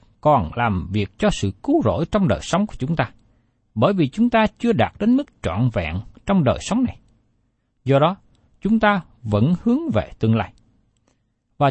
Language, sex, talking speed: Vietnamese, male, 190 wpm